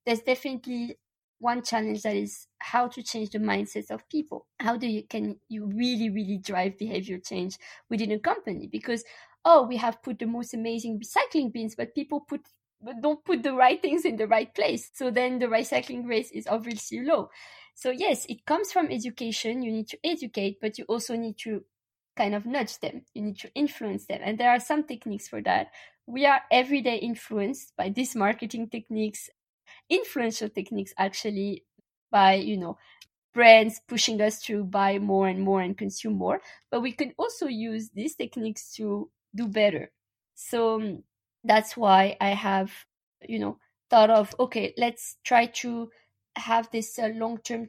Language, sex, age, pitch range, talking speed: English, female, 20-39, 210-255 Hz, 175 wpm